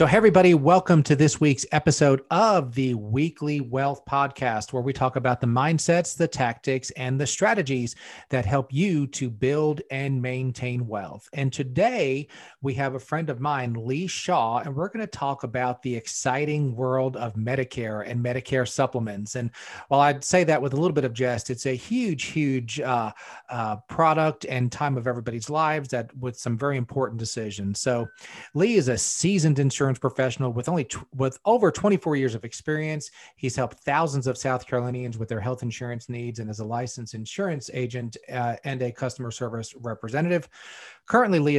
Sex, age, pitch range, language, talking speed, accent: male, 40-59, 120-145 Hz, English, 180 wpm, American